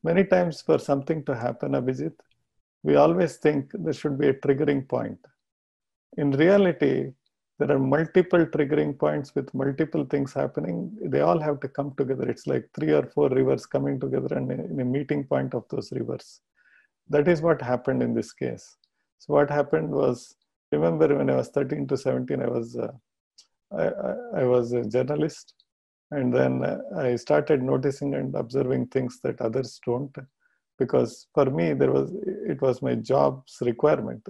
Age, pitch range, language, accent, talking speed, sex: 50-69, 120-150 Hz, English, Indian, 170 wpm, male